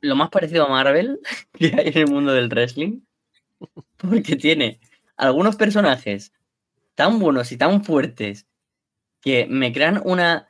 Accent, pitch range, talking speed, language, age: Spanish, 125-180 Hz, 145 wpm, Spanish, 10-29